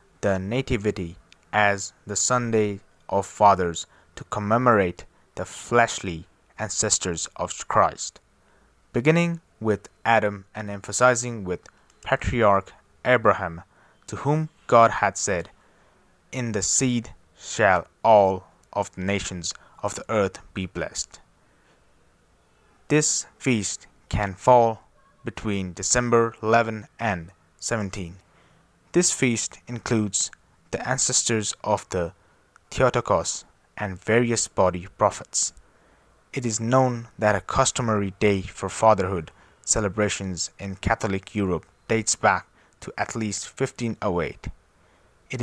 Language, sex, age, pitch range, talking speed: English, male, 20-39, 95-115 Hz, 105 wpm